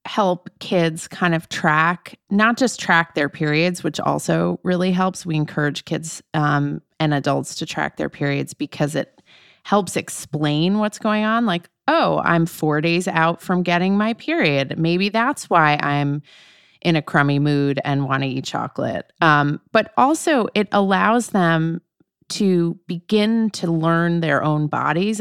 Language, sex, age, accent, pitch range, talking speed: English, female, 30-49, American, 150-185 Hz, 160 wpm